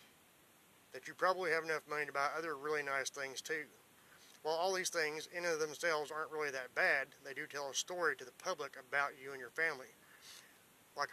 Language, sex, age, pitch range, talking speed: English, male, 30-49, 145-170 Hz, 210 wpm